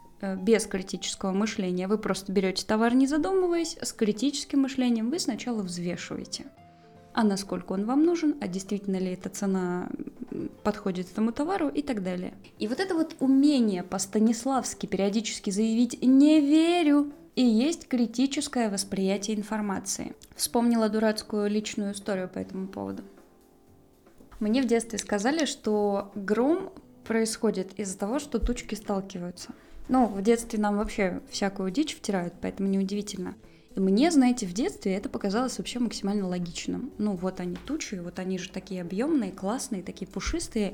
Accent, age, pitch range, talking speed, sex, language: native, 20-39, 195-250 Hz, 145 wpm, female, Russian